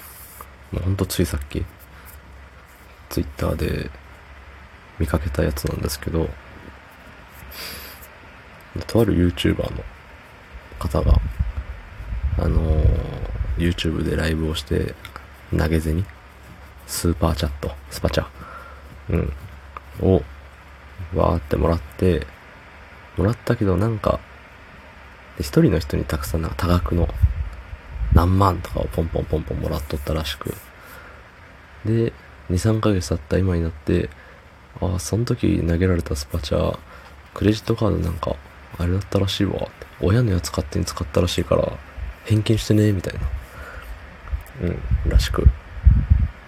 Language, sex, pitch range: Japanese, male, 75-95 Hz